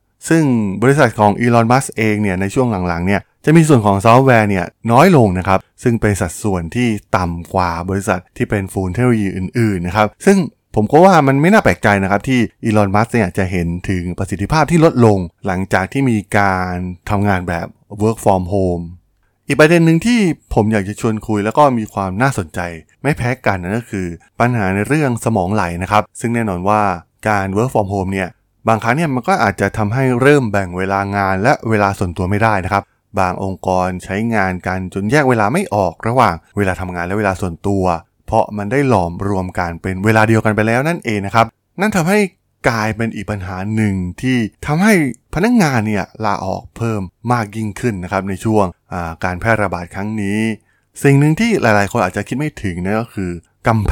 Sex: male